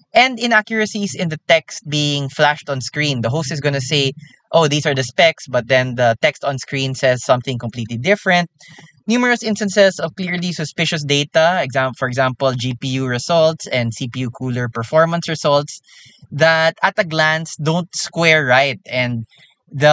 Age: 20-39